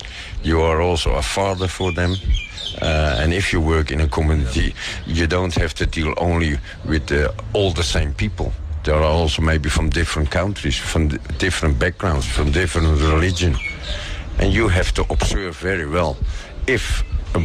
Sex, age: male, 50-69